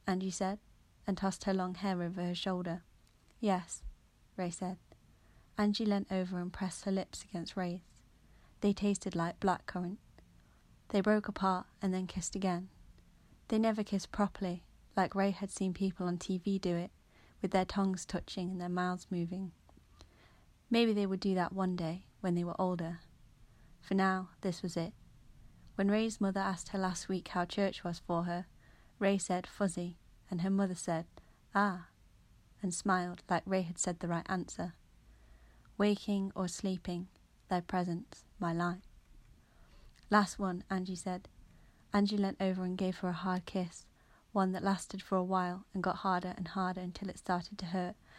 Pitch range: 180-195 Hz